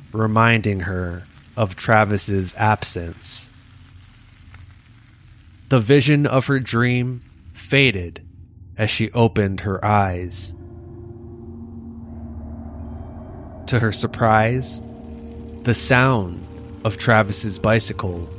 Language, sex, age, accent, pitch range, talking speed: English, male, 20-39, American, 95-115 Hz, 80 wpm